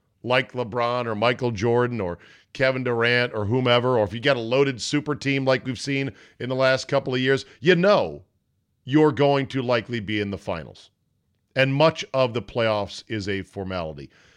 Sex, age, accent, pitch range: male, 40-59, American, 105-140 Hz